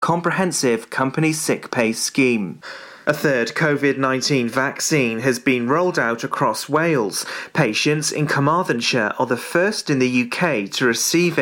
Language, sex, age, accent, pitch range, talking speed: English, male, 30-49, British, 130-160 Hz, 135 wpm